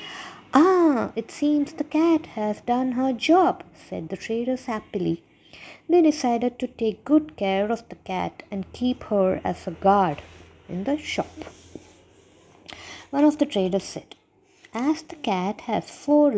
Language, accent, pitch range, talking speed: English, Indian, 190-255 Hz, 150 wpm